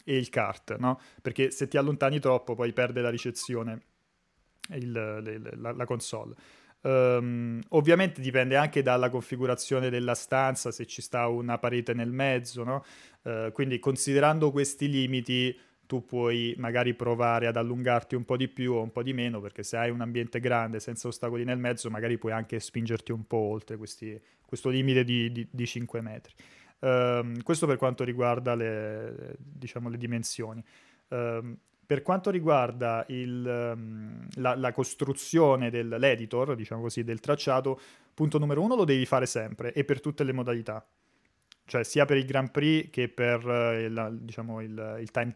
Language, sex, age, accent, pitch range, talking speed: Italian, male, 20-39, native, 115-130 Hz, 160 wpm